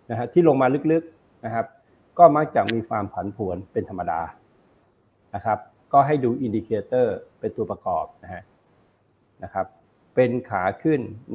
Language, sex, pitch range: Thai, male, 105-125 Hz